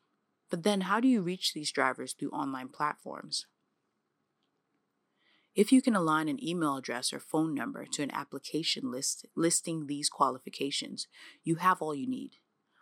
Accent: American